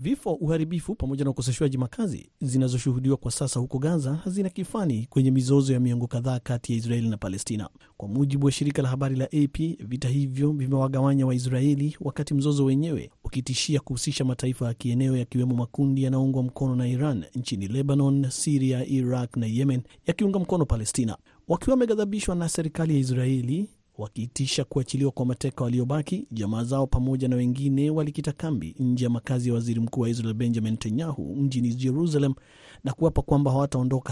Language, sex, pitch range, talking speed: Swahili, male, 125-145 Hz, 165 wpm